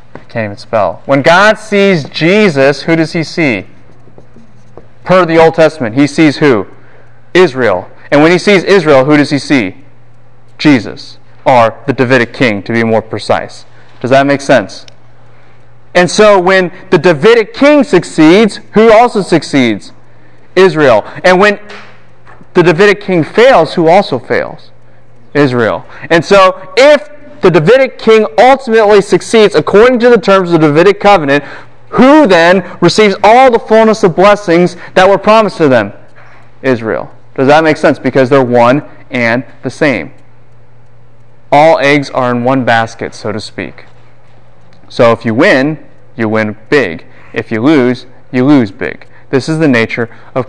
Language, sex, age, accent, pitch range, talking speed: English, male, 30-49, American, 125-185 Hz, 155 wpm